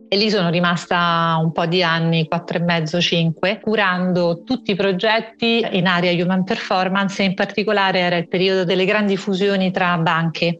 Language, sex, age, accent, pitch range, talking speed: Italian, female, 40-59, native, 175-195 Hz, 175 wpm